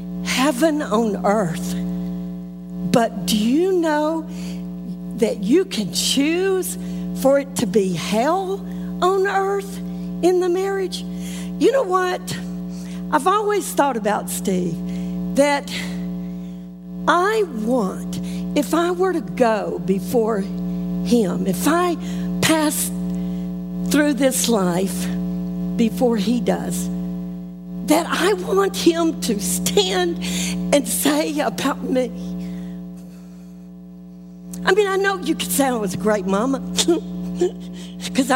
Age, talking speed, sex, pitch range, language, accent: 50-69, 110 wpm, female, 180-245 Hz, English, American